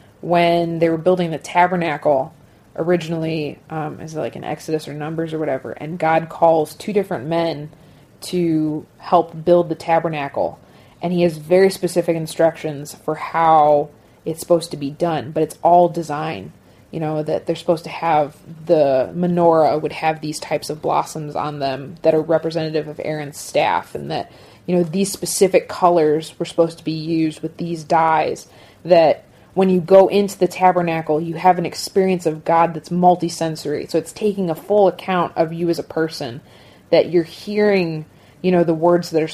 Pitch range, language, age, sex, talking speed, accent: 155-175 Hz, English, 20-39, female, 180 wpm, American